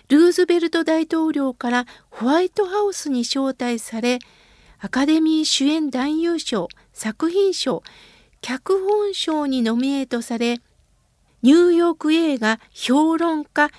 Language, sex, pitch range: Japanese, female, 245-345 Hz